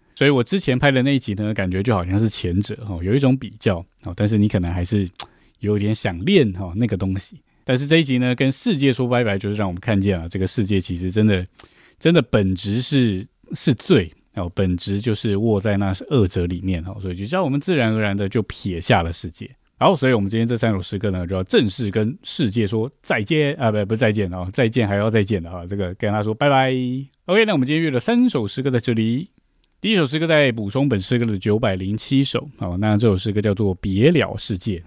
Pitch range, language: 95-125 Hz, Chinese